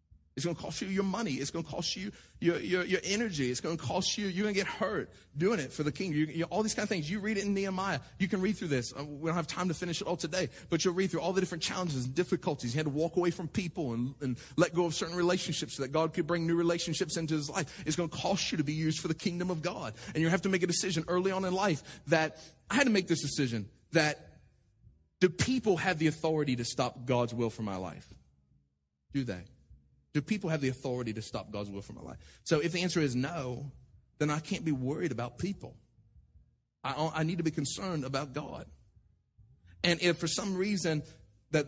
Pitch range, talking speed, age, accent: 125-180 Hz, 250 wpm, 30-49, American